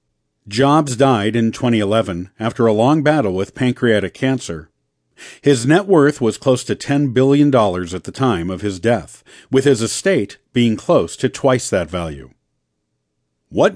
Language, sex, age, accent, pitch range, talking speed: English, male, 50-69, American, 110-150 Hz, 155 wpm